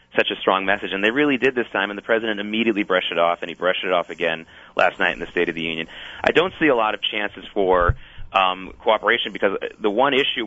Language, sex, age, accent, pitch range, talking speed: English, male, 30-49, American, 95-120 Hz, 260 wpm